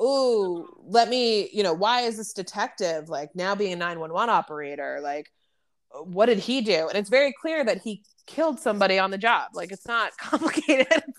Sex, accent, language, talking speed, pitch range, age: female, American, English, 195 wpm, 170-215 Hz, 20-39